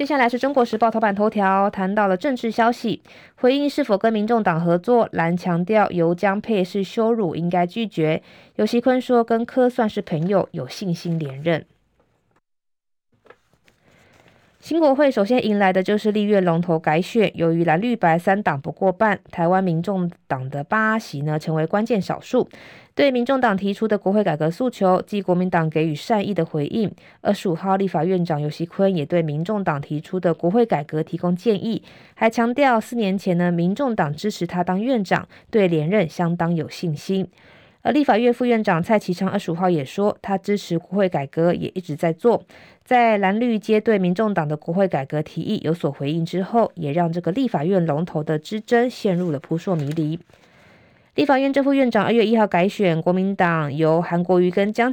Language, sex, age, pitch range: Chinese, female, 20-39, 165-220 Hz